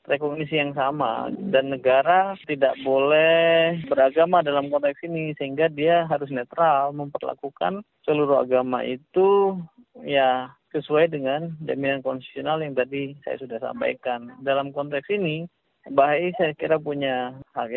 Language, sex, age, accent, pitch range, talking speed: Indonesian, male, 20-39, native, 125-150 Hz, 125 wpm